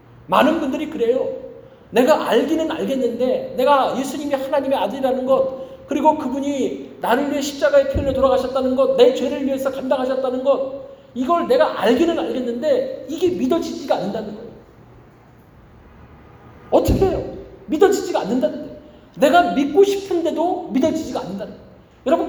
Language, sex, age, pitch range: Korean, male, 40-59, 250-315 Hz